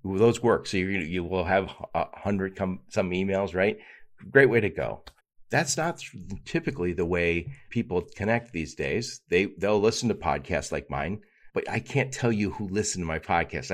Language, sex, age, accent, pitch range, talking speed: English, male, 50-69, American, 90-130 Hz, 190 wpm